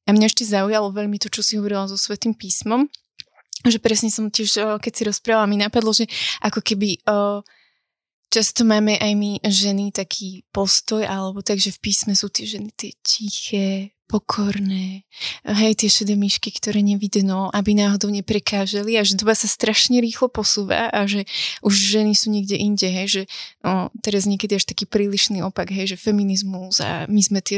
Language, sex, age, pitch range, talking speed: Slovak, female, 20-39, 195-215 Hz, 175 wpm